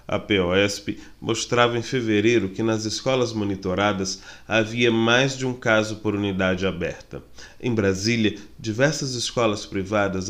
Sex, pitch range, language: male, 105-130 Hz, Portuguese